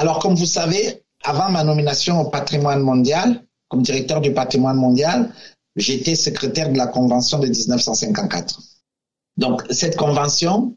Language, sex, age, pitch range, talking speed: English, male, 50-69, 125-160 Hz, 140 wpm